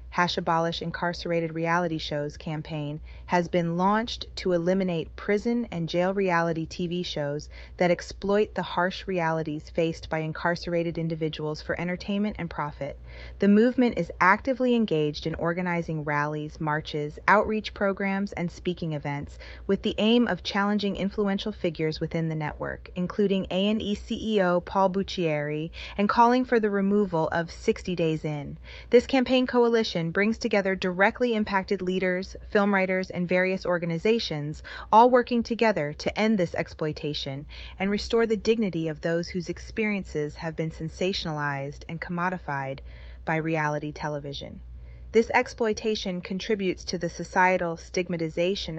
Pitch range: 155-200 Hz